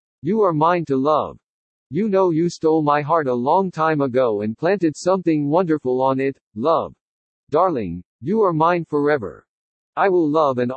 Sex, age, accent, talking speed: male, 50-69, American, 175 wpm